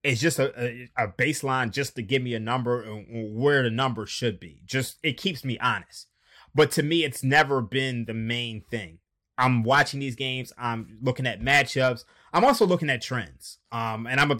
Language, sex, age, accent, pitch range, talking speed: English, male, 20-39, American, 115-145 Hz, 205 wpm